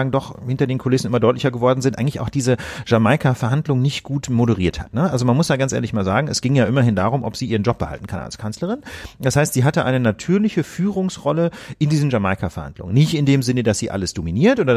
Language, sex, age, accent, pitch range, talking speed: German, male, 40-59, German, 115-150 Hz, 230 wpm